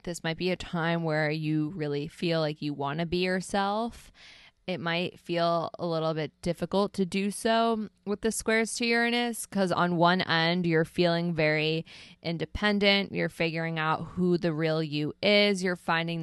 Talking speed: 180 wpm